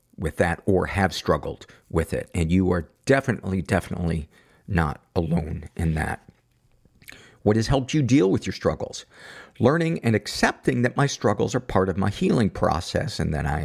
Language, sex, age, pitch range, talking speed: English, male, 50-69, 85-110 Hz, 170 wpm